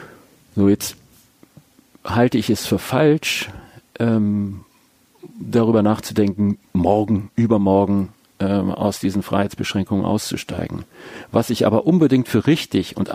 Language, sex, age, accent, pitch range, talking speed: German, male, 40-59, German, 105-130 Hz, 110 wpm